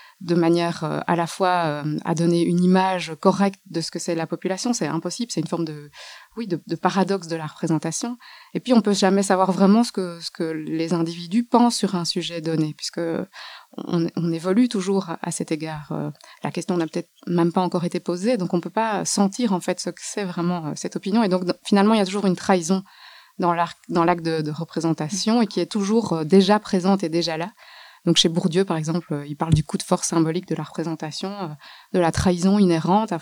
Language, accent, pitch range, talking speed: French, French, 165-200 Hz, 225 wpm